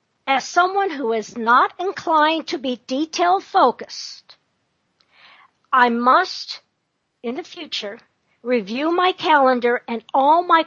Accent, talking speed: American, 115 wpm